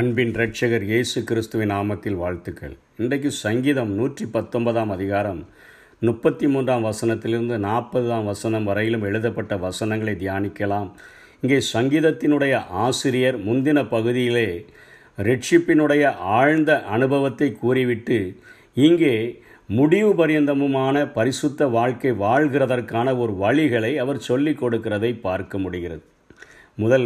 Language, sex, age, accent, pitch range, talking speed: Tamil, male, 50-69, native, 110-140 Hz, 90 wpm